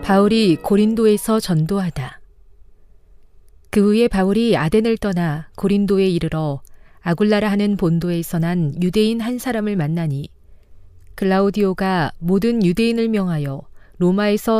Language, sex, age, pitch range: Korean, female, 40-59, 155-215 Hz